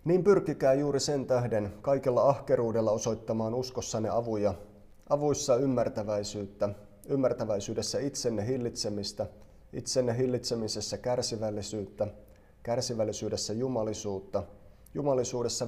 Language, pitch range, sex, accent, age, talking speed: Finnish, 105-130 Hz, male, native, 30-49, 80 wpm